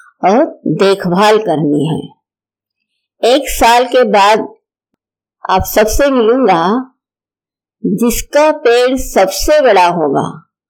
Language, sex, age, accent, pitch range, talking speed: Hindi, female, 50-69, native, 200-300 Hz, 90 wpm